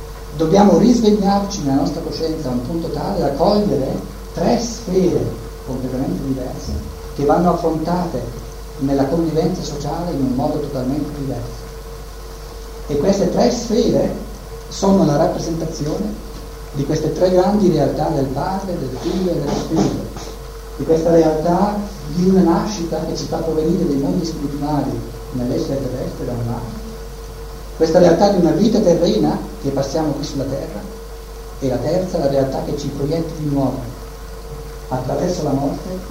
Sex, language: male, Italian